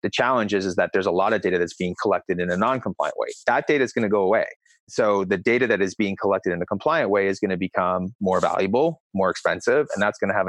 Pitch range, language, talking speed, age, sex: 95-110 Hz, English, 275 wpm, 30-49, male